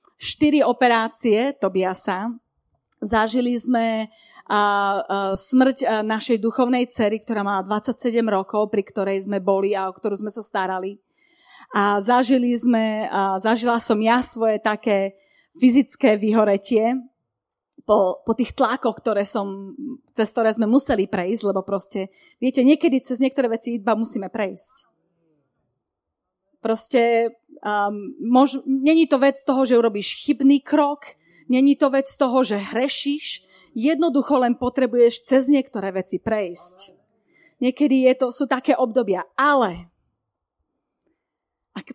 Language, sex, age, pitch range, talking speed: Slovak, female, 30-49, 205-270 Hz, 125 wpm